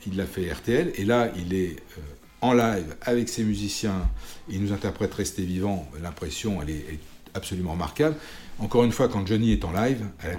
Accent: French